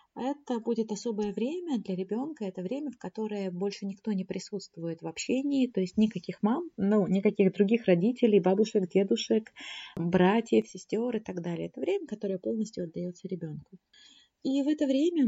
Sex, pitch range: female, 175-215 Hz